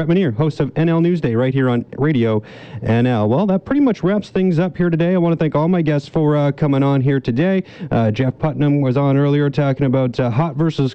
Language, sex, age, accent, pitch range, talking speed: English, male, 30-49, American, 115-150 Hz, 230 wpm